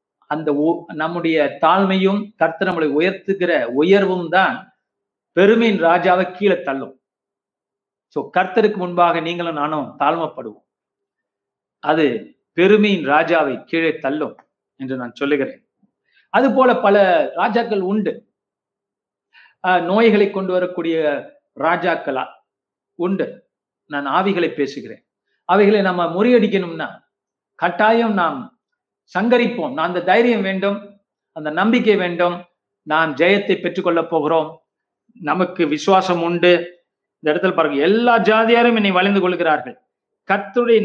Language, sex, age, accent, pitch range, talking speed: Tamil, male, 50-69, native, 165-215 Hz, 100 wpm